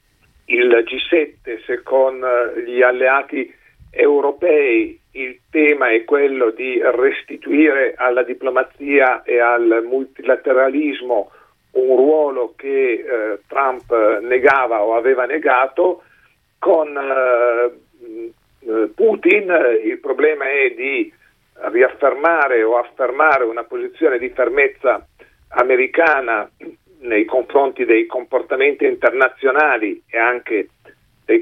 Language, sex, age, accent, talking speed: Italian, male, 50-69, native, 95 wpm